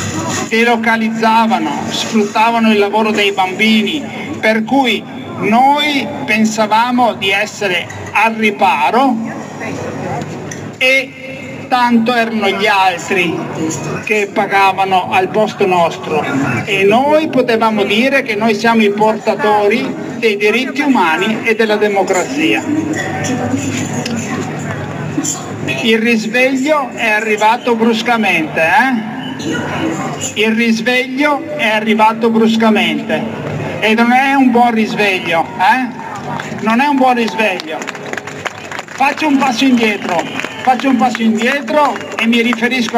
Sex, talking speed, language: male, 100 wpm, Italian